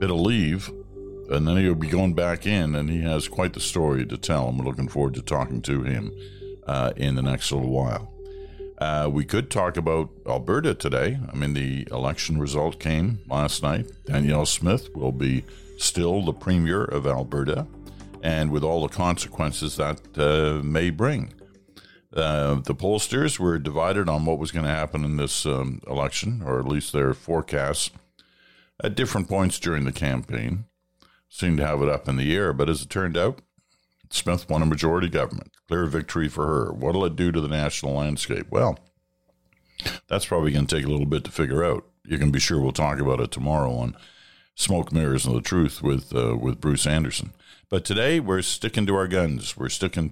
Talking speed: 195 wpm